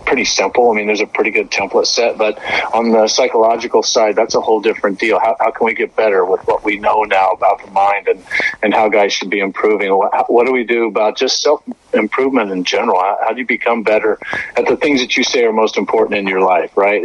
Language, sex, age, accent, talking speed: English, male, 40-59, American, 245 wpm